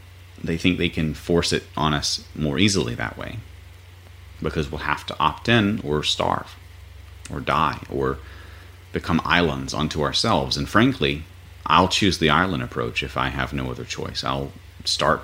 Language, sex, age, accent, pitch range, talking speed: English, male, 30-49, American, 70-90 Hz, 165 wpm